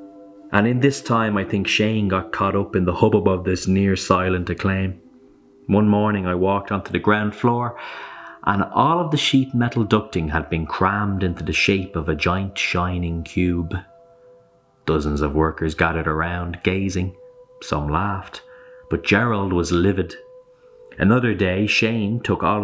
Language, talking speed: English, 160 wpm